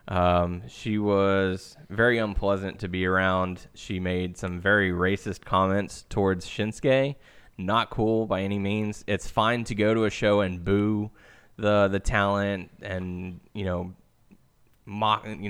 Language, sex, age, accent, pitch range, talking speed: English, male, 20-39, American, 95-115 Hz, 145 wpm